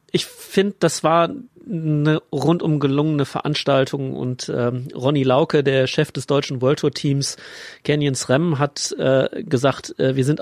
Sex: male